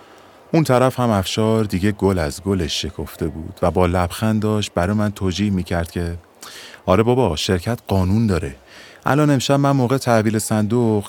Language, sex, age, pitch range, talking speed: Persian, male, 30-49, 85-110 Hz, 160 wpm